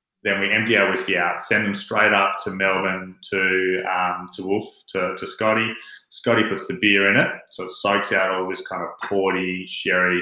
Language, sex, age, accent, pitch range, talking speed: English, male, 20-39, Australian, 95-110 Hz, 205 wpm